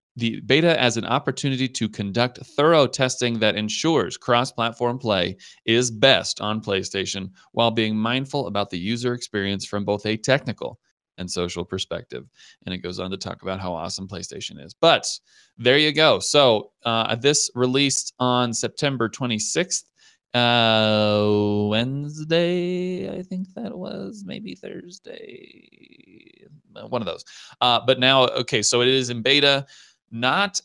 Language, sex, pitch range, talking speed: English, male, 100-130 Hz, 145 wpm